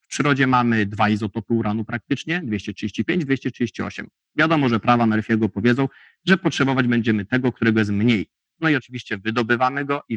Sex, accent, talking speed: male, native, 160 wpm